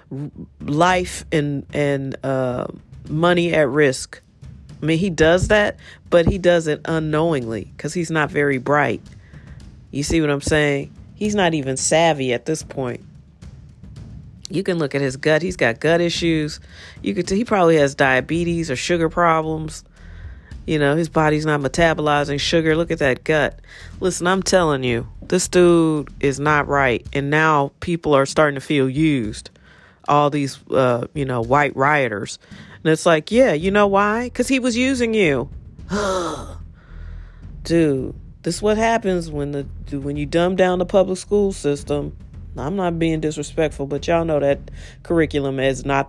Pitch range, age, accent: 135-170 Hz, 40-59, American